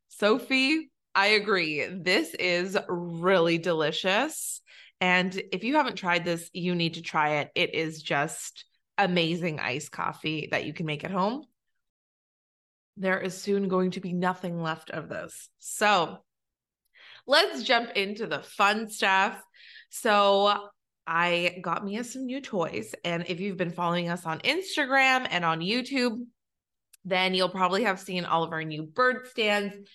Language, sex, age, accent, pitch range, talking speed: English, female, 20-39, American, 175-215 Hz, 150 wpm